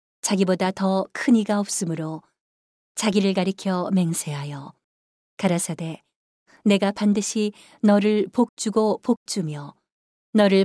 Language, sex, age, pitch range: Korean, female, 40-59, 180-215 Hz